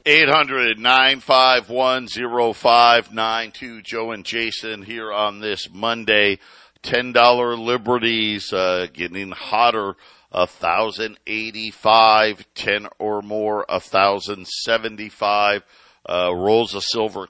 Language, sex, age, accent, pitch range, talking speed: English, male, 50-69, American, 105-135 Hz, 75 wpm